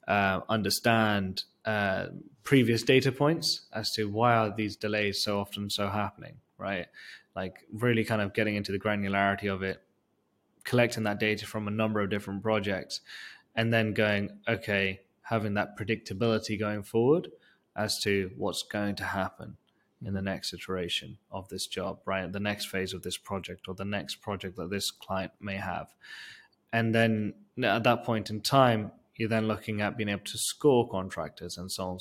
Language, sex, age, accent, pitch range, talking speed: English, male, 20-39, British, 95-110 Hz, 175 wpm